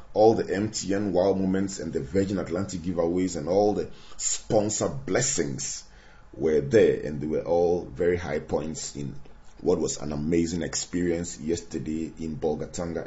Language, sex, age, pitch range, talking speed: English, male, 30-49, 90-110 Hz, 150 wpm